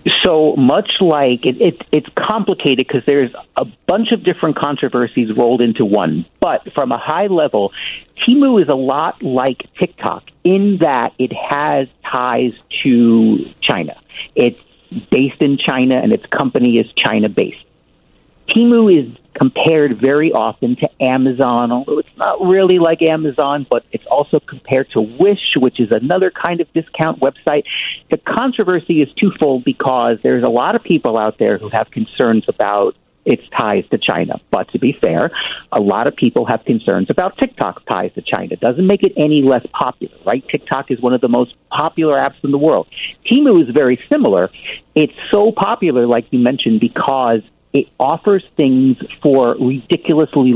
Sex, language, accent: male, English, American